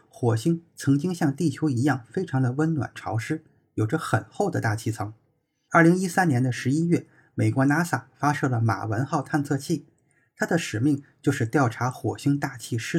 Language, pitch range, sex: Chinese, 120-160 Hz, male